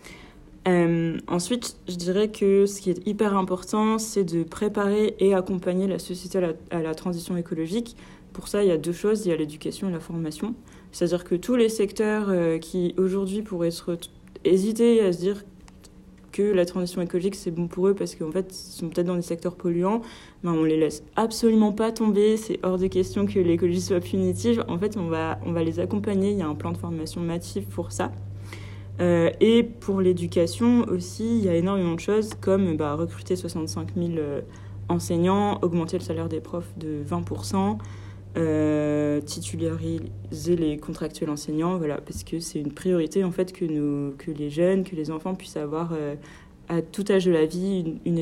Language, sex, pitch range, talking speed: French, female, 155-195 Hz, 190 wpm